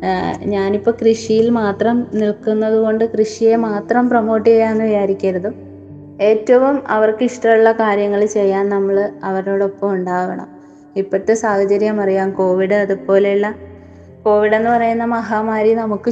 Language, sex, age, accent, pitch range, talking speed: Malayalam, female, 20-39, native, 205-225 Hz, 95 wpm